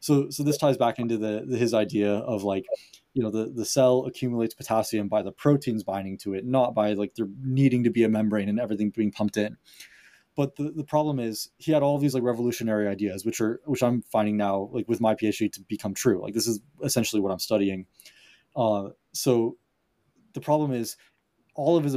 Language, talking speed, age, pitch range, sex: English, 215 wpm, 20-39, 105-125 Hz, male